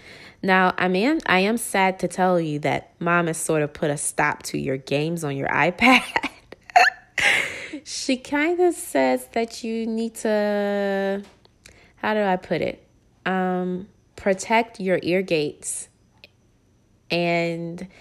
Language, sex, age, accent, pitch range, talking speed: English, female, 20-39, American, 170-225 Hz, 145 wpm